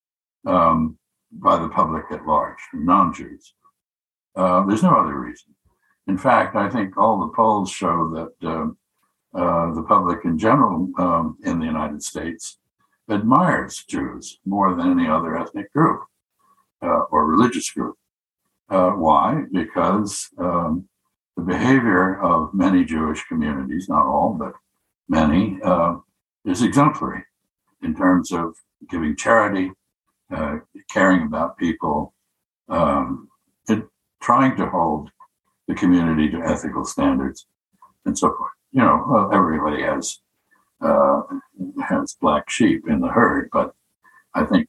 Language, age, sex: English, 60-79, male